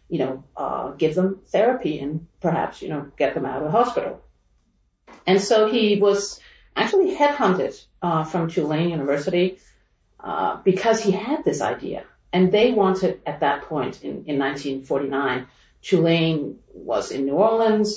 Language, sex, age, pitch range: English, female, 40-59, 150-200 Hz